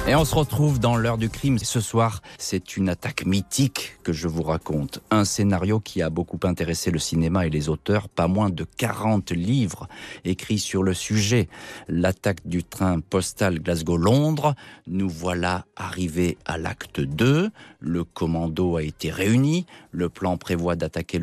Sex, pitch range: male, 85-110 Hz